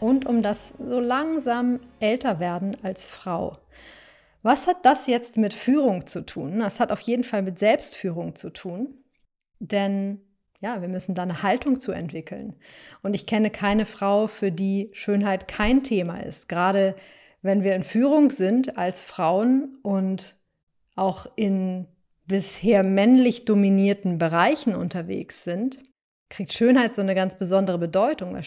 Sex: female